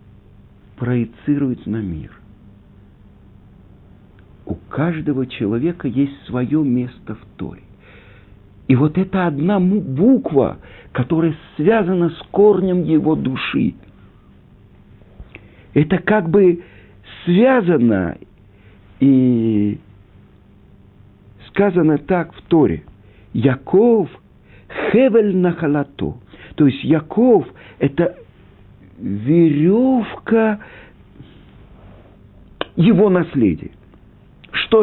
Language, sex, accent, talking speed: Russian, male, native, 75 wpm